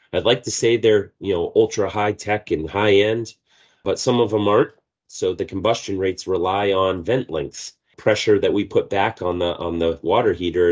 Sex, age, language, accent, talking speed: male, 30-49, English, American, 205 wpm